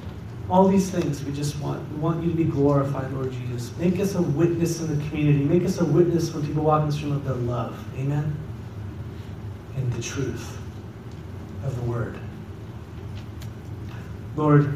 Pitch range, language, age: 110-135 Hz, English, 30-49